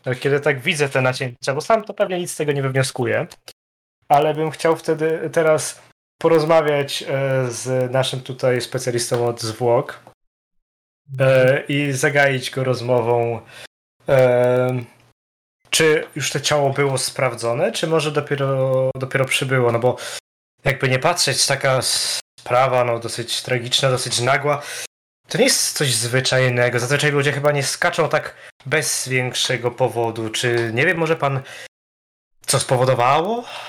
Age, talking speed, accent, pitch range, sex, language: 20-39, 135 wpm, native, 125-150 Hz, male, Polish